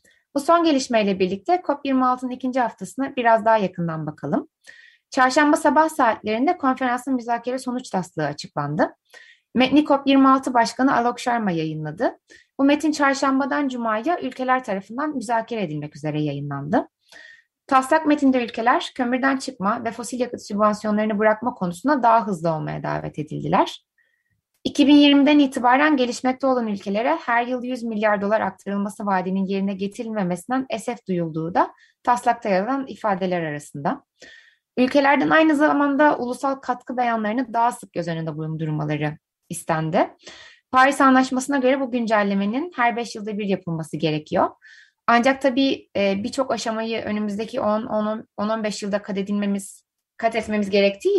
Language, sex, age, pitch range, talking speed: Turkish, female, 30-49, 200-275 Hz, 125 wpm